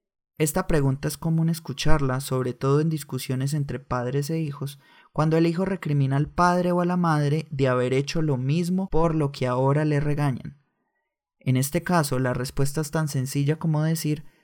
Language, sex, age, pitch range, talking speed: Spanish, male, 20-39, 135-160 Hz, 185 wpm